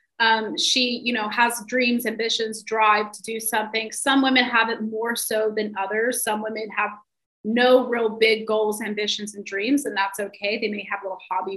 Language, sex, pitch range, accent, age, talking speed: English, female, 215-255 Hz, American, 30-49, 195 wpm